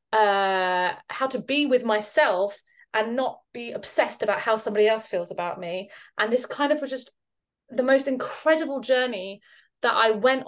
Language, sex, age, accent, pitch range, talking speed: English, female, 20-39, British, 205-265 Hz, 170 wpm